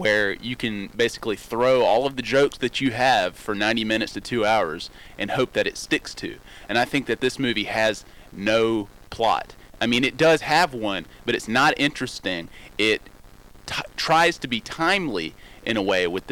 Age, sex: 30-49, male